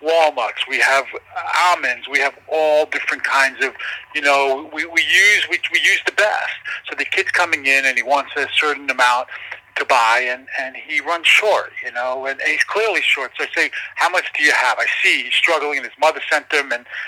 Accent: American